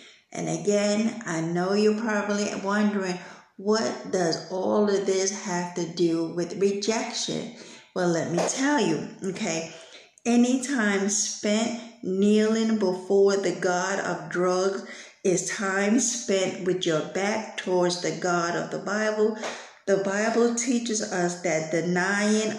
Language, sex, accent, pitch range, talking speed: English, female, American, 180-215 Hz, 135 wpm